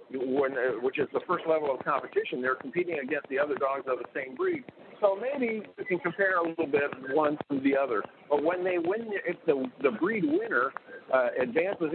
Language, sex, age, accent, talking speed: English, male, 60-79, American, 215 wpm